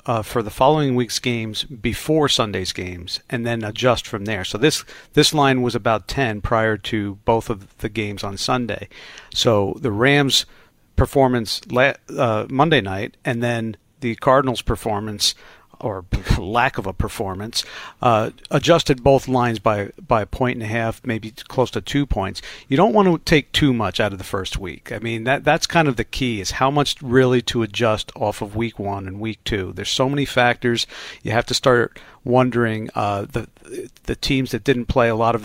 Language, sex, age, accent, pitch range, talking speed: English, male, 50-69, American, 110-130 Hz, 195 wpm